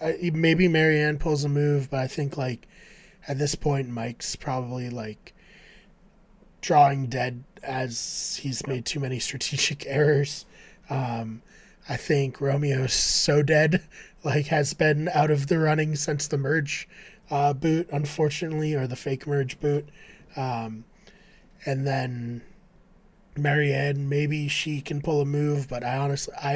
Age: 20-39